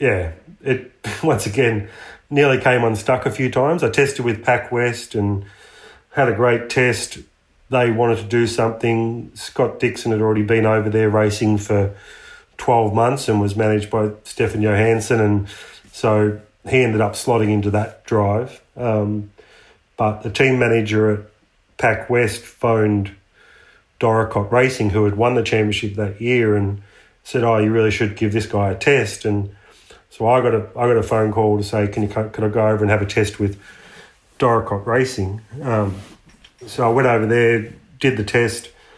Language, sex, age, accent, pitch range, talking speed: English, male, 30-49, Australian, 105-120 Hz, 175 wpm